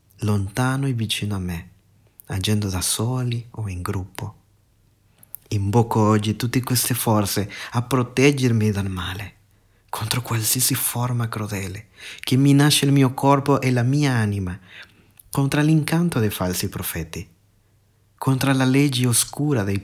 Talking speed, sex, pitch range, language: 130 wpm, male, 100-140 Hz, Italian